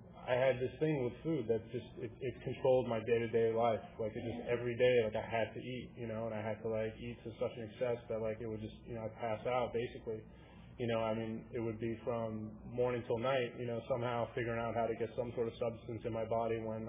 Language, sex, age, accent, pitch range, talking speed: English, male, 20-39, American, 110-125 Hz, 265 wpm